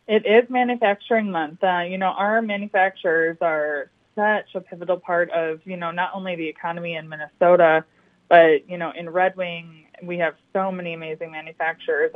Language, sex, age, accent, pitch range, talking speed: English, female, 20-39, American, 175-205 Hz, 175 wpm